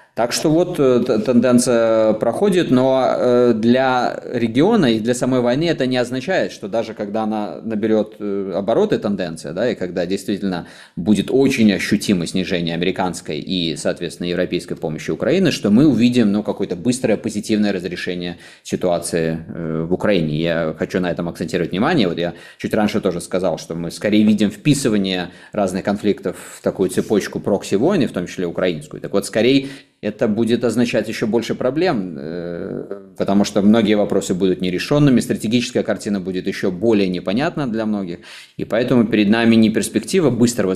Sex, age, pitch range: male, 20-39, 90-115 Hz